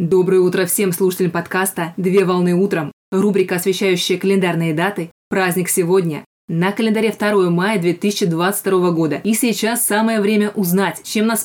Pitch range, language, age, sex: 180-210 Hz, Russian, 20-39, female